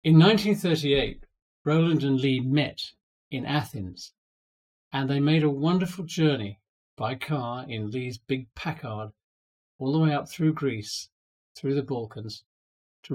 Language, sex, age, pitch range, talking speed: English, male, 50-69, 120-155 Hz, 135 wpm